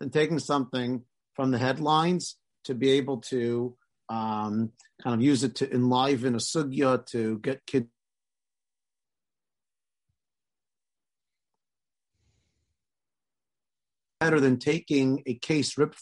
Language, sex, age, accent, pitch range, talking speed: English, male, 50-69, American, 125-155 Hz, 105 wpm